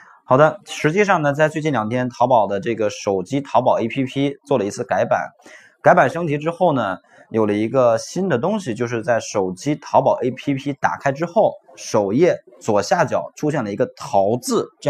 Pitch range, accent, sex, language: 110-150 Hz, native, male, Chinese